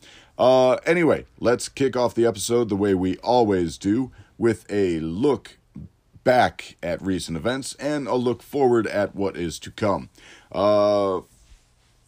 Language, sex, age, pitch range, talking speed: English, male, 40-59, 80-115 Hz, 145 wpm